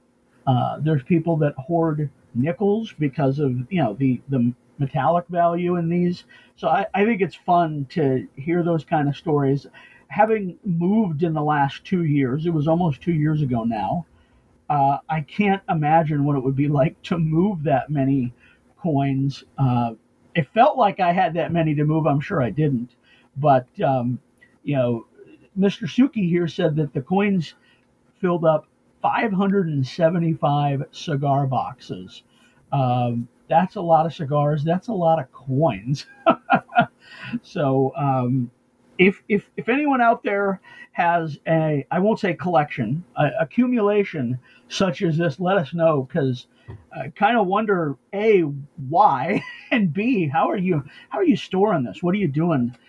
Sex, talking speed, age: male, 160 wpm, 50-69